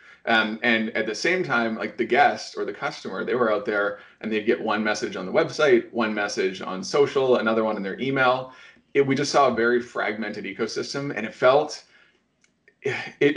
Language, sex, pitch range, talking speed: English, male, 115-140 Hz, 200 wpm